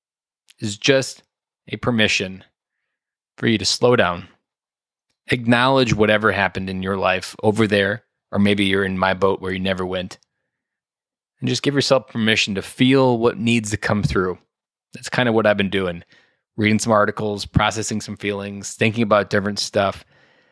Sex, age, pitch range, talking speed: male, 20-39, 100-115 Hz, 165 wpm